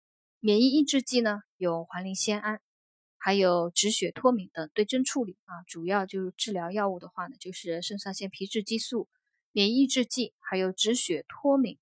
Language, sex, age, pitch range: Chinese, female, 20-39, 185-235 Hz